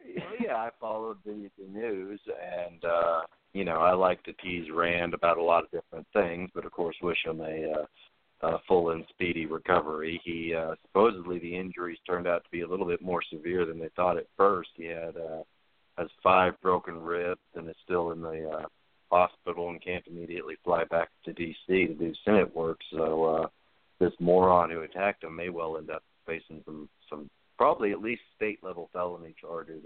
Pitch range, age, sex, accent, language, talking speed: 80-90 Hz, 40-59, male, American, English, 200 wpm